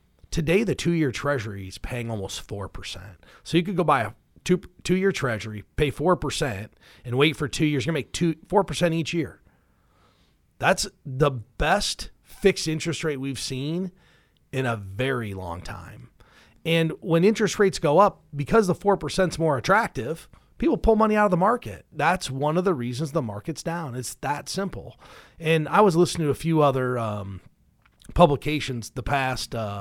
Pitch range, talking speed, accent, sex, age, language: 105-165 Hz, 175 wpm, American, male, 40-59, English